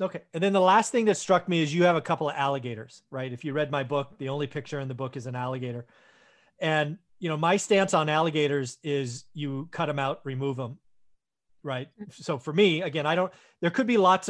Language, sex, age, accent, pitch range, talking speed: English, male, 40-59, American, 135-175 Hz, 235 wpm